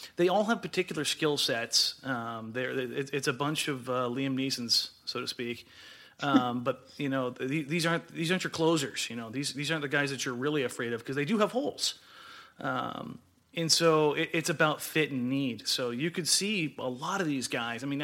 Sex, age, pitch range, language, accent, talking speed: male, 30-49, 130-160 Hz, English, American, 220 wpm